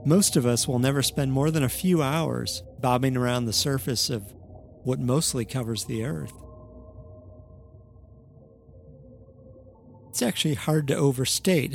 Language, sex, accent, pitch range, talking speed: English, male, American, 105-135 Hz, 135 wpm